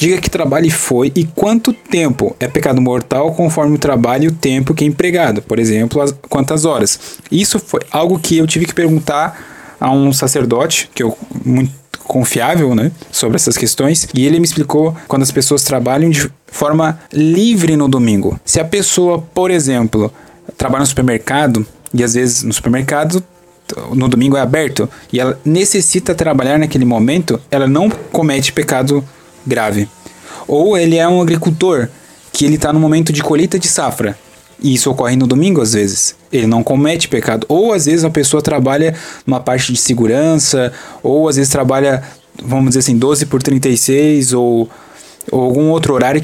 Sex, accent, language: male, Brazilian, Portuguese